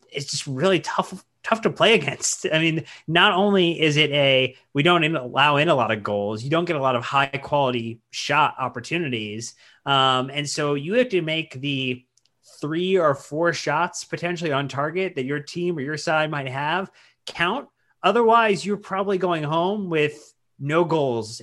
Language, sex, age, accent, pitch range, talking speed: English, male, 30-49, American, 125-160 Hz, 180 wpm